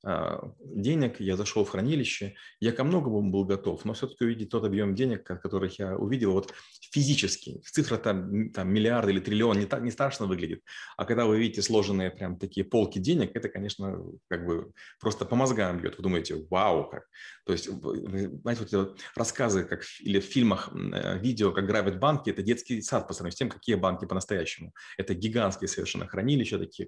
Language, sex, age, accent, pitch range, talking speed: Russian, male, 30-49, native, 100-120 Hz, 190 wpm